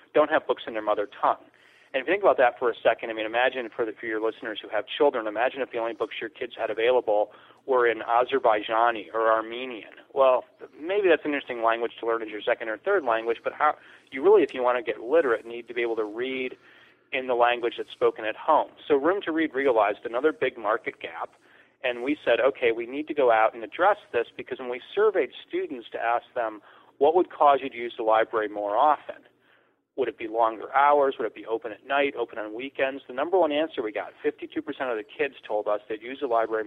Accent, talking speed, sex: American, 240 wpm, male